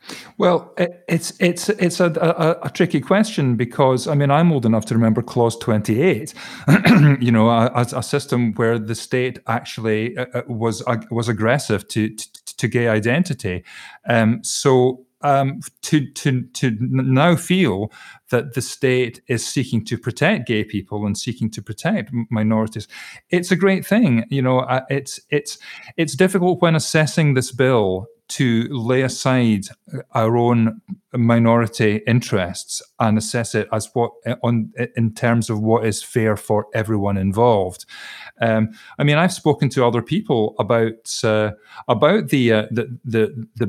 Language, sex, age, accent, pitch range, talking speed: English, male, 40-59, British, 110-140 Hz, 150 wpm